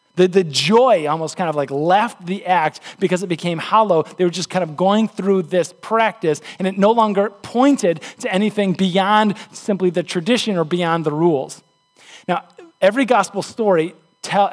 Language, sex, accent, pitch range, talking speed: English, male, American, 180-240 Hz, 180 wpm